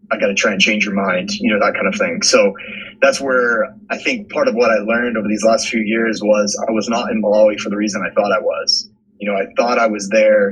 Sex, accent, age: male, American, 20-39